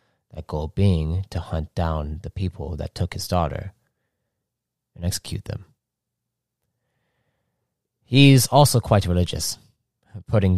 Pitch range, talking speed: 90-115 Hz, 115 wpm